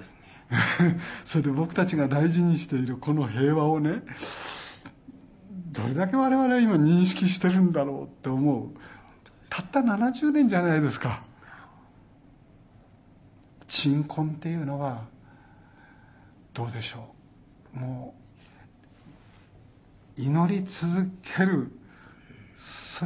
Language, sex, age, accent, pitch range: Japanese, male, 60-79, native, 135-180 Hz